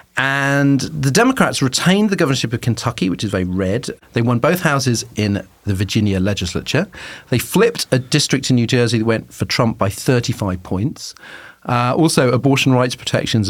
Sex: male